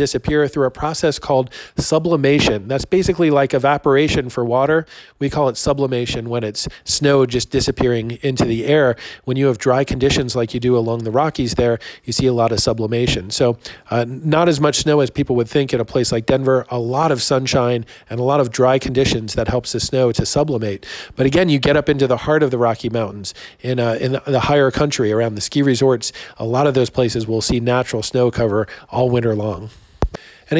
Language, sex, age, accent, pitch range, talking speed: English, male, 40-59, American, 125-145 Hz, 215 wpm